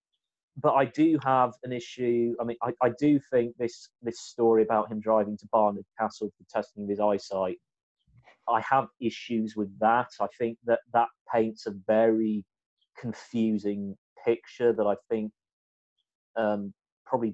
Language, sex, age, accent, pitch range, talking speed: English, male, 30-49, British, 100-120 Hz, 150 wpm